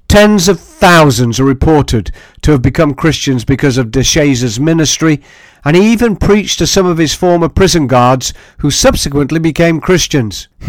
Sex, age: male, 50-69